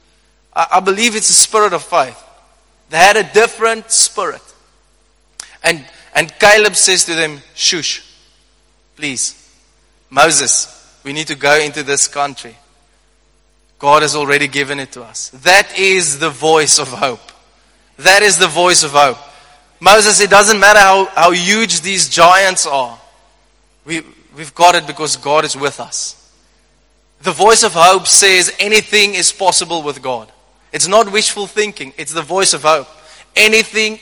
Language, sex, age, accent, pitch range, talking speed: English, male, 20-39, South African, 155-205 Hz, 150 wpm